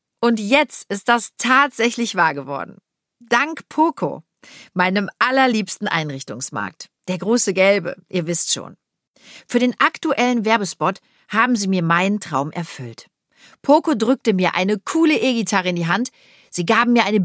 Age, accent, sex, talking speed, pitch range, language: 40-59, German, female, 145 wpm, 175-245 Hz, German